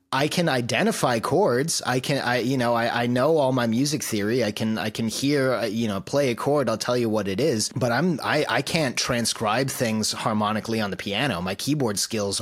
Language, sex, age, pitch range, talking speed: English, male, 30-49, 100-120 Hz, 220 wpm